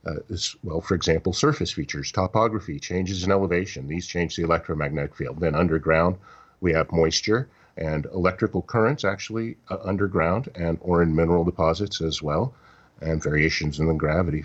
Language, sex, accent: English, male, American